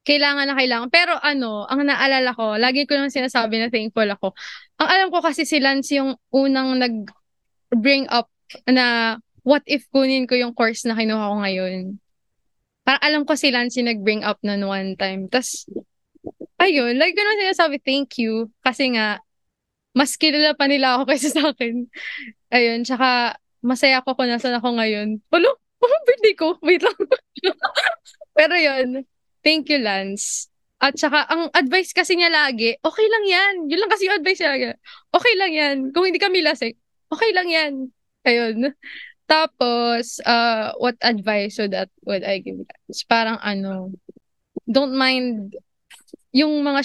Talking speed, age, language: 160 wpm, 20-39, Filipino